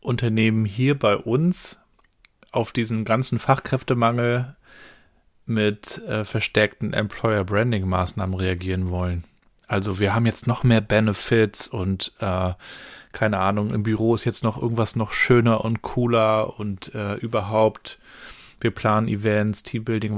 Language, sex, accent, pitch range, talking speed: German, male, German, 105-120 Hz, 125 wpm